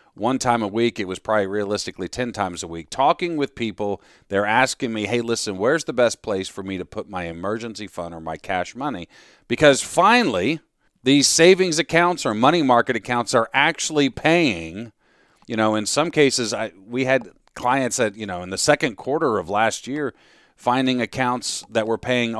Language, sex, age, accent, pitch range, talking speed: English, male, 40-59, American, 105-145 Hz, 190 wpm